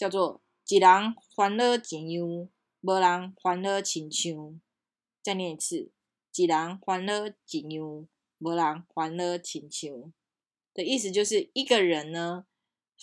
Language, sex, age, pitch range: Chinese, female, 20-39, 165-210 Hz